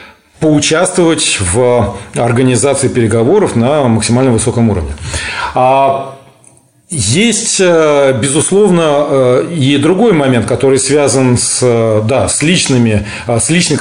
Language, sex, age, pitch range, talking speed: Russian, male, 40-59, 110-140 Hz, 90 wpm